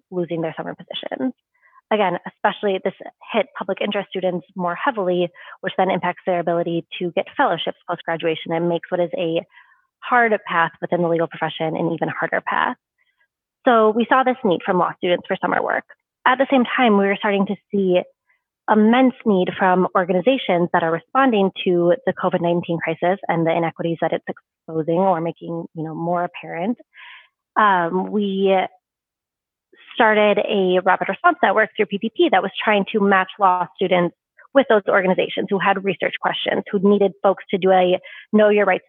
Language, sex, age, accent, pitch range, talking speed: English, female, 20-39, American, 175-215 Hz, 165 wpm